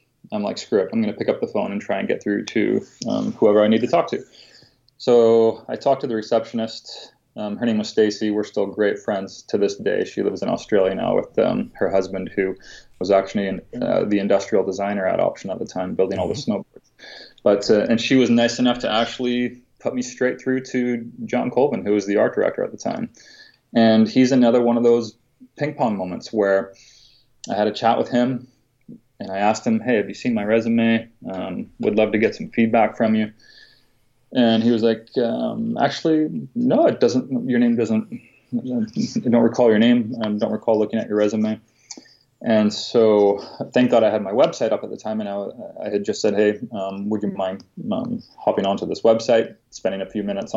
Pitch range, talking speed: 105-125 Hz, 215 wpm